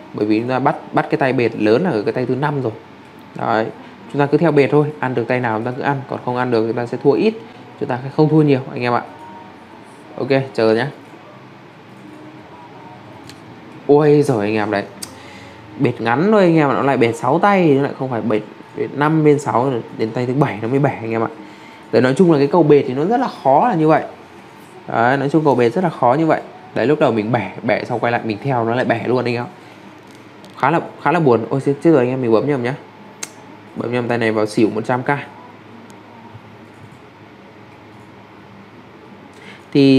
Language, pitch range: English, 110-140 Hz